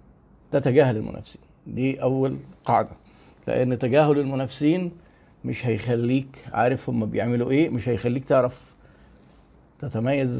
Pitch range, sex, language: 130-170 Hz, male, Arabic